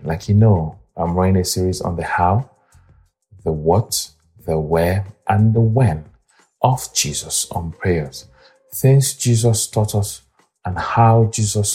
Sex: male